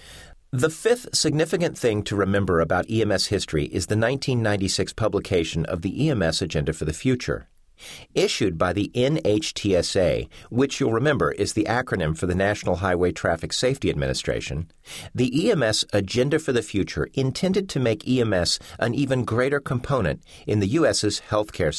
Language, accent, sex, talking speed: English, American, male, 150 wpm